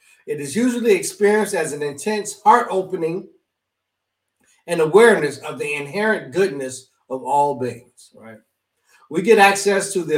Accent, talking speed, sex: American, 135 wpm, male